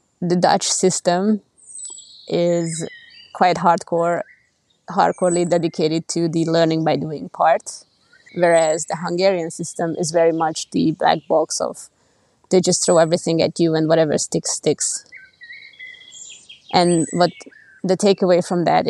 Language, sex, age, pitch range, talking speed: English, female, 20-39, 170-195 Hz, 130 wpm